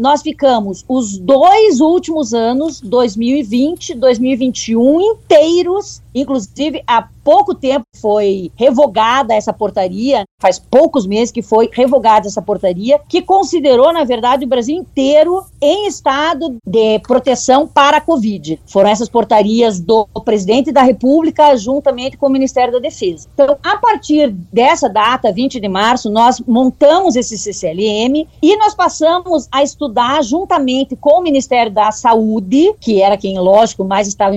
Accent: Brazilian